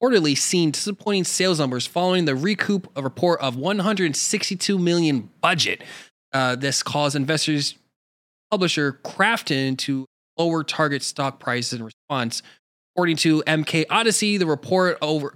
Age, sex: 20-39, male